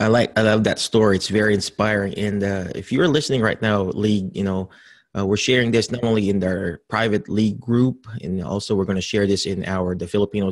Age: 20-39